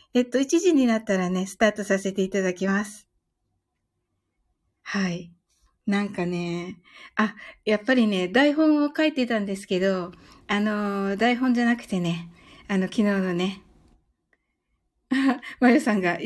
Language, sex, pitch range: Japanese, female, 195-270 Hz